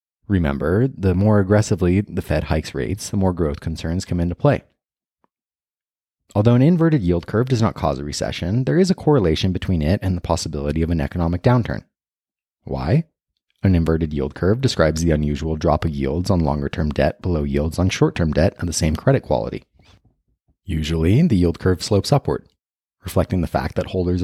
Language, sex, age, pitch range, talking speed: English, male, 30-49, 80-105 Hz, 185 wpm